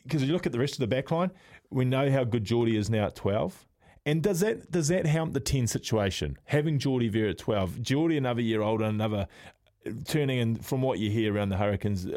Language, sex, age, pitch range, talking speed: English, male, 20-39, 110-140 Hz, 230 wpm